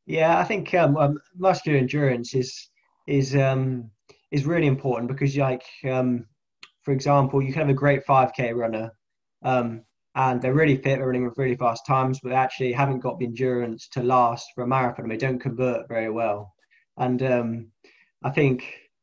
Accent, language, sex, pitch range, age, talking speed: British, English, male, 120-140 Hz, 20-39, 185 wpm